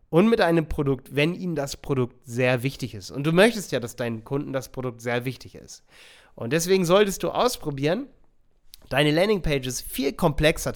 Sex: male